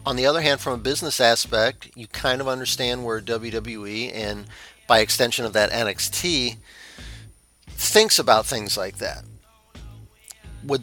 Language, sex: English, male